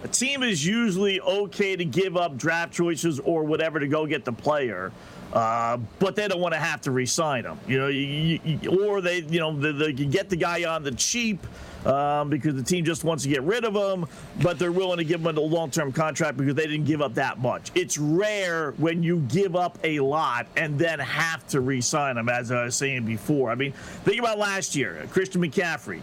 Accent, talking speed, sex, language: American, 225 wpm, male, English